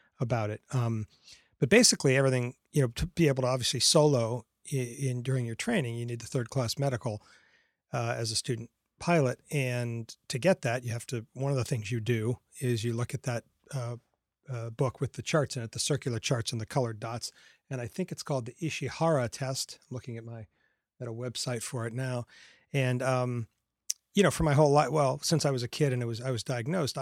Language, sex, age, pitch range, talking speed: English, male, 40-59, 120-145 Hz, 220 wpm